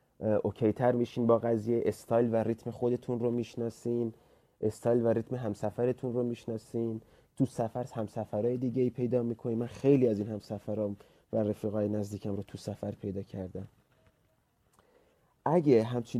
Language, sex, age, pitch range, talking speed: Persian, male, 30-49, 105-135 Hz, 140 wpm